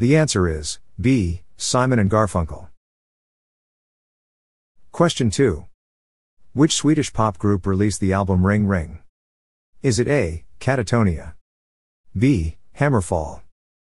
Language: English